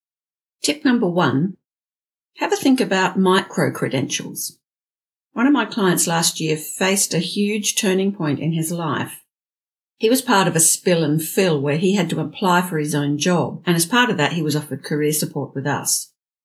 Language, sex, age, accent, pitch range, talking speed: English, female, 50-69, Australian, 150-190 Hz, 185 wpm